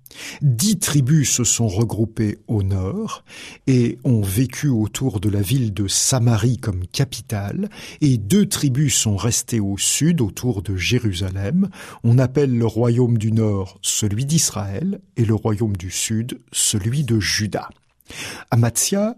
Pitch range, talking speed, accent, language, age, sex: 110-155 Hz, 140 wpm, French, French, 50-69, male